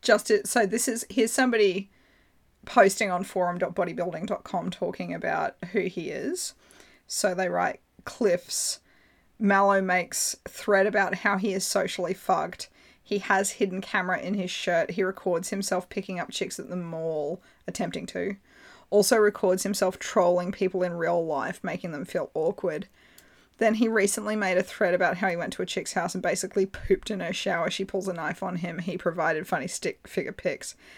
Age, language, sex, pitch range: 20-39, English, female, 175-200 Hz